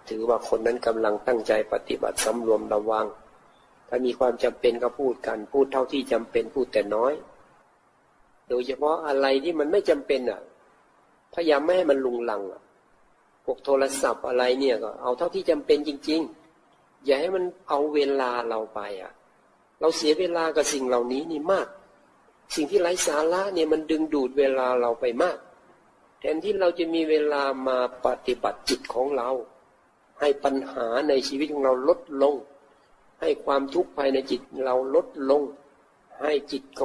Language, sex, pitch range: Thai, male, 130-155 Hz